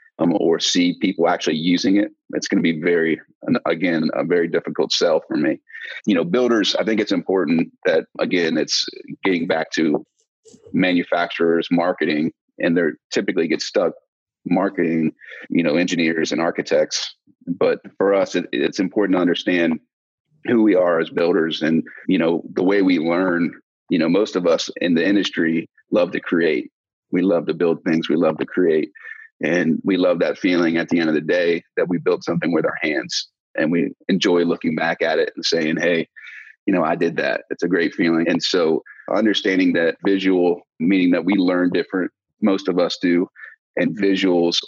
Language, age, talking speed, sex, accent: English, 30-49, 185 wpm, male, American